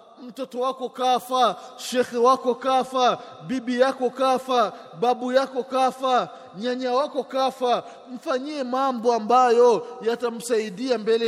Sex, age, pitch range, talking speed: male, 20-39, 225-255 Hz, 105 wpm